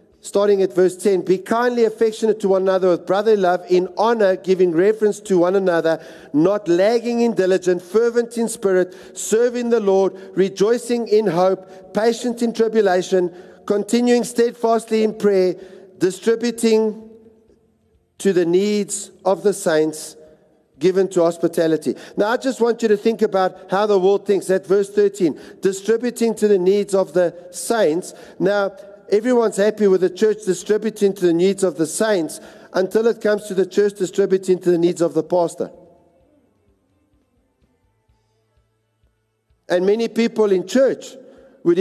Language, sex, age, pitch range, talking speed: English, male, 50-69, 180-220 Hz, 150 wpm